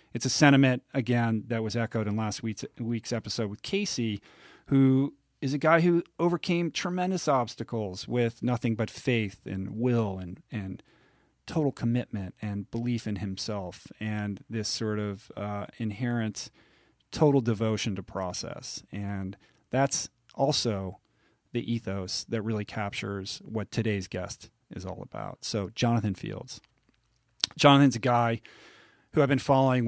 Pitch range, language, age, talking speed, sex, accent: 105-125 Hz, English, 40-59, 140 wpm, male, American